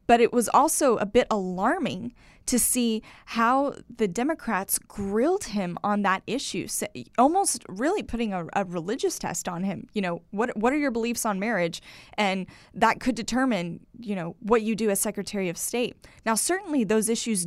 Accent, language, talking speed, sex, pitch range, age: American, English, 180 wpm, female, 195-240 Hz, 10-29